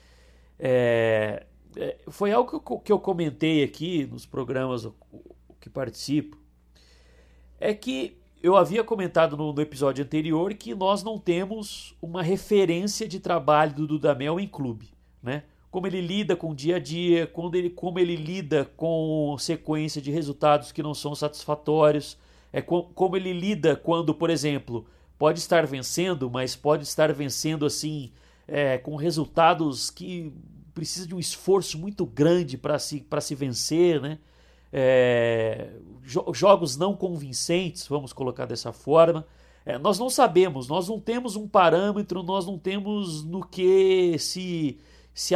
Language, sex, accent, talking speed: Portuguese, male, Brazilian, 150 wpm